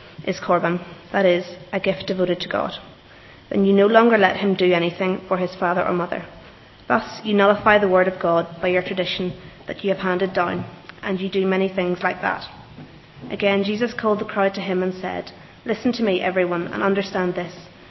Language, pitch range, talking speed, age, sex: English, 180-200 Hz, 200 wpm, 30-49, female